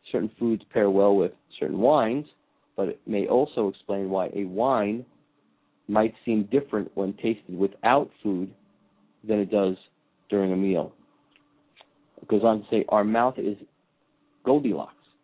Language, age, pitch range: English, 40-59, 100-130 Hz